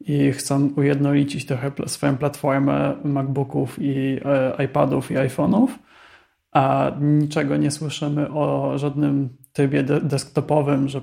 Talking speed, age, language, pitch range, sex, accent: 110 wpm, 20-39, Polish, 135-150 Hz, male, native